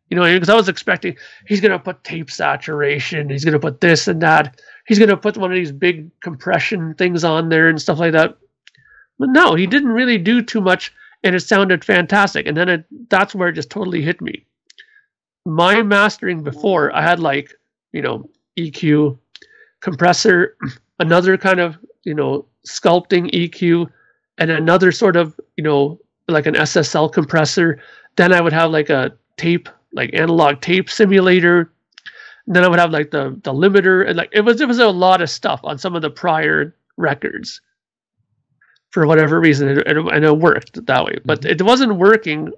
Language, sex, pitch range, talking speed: English, male, 155-200 Hz, 185 wpm